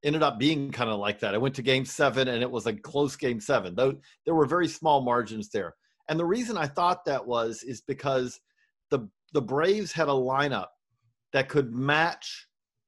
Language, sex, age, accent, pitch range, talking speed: English, male, 40-59, American, 130-180 Hz, 200 wpm